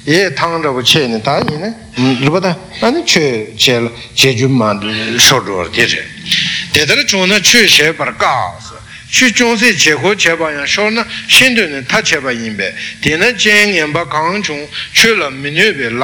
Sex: male